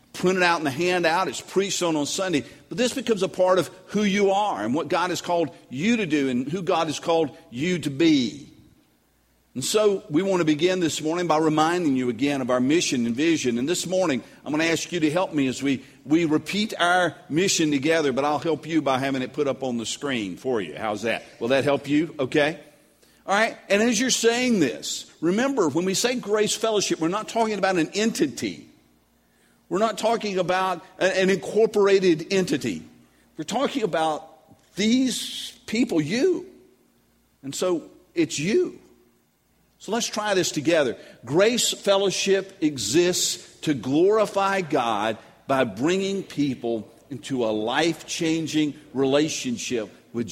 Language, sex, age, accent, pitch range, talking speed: English, male, 50-69, American, 145-200 Hz, 175 wpm